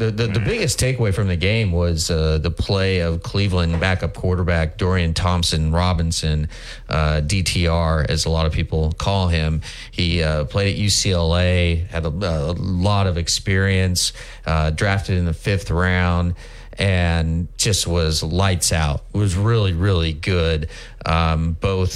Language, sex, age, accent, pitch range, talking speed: English, male, 30-49, American, 80-95 Hz, 155 wpm